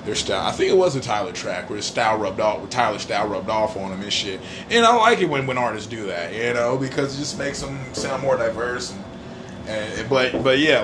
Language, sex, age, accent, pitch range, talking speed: English, male, 30-49, American, 110-135 Hz, 245 wpm